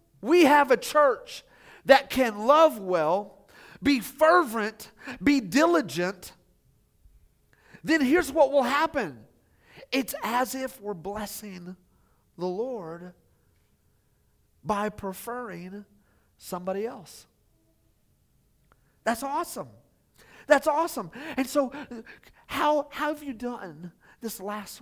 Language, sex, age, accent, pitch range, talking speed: English, male, 40-59, American, 160-250 Hz, 100 wpm